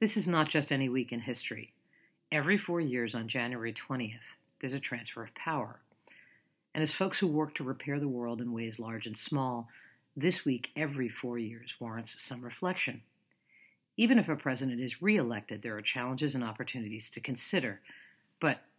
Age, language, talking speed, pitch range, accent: 50-69, English, 175 wpm, 120-150 Hz, American